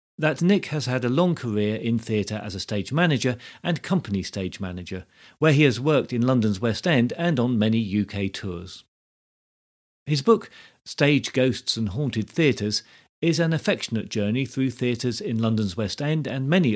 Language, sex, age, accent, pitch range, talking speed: English, male, 40-59, British, 105-145 Hz, 175 wpm